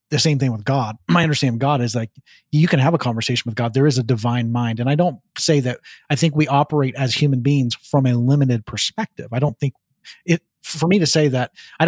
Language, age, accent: English, 30-49, American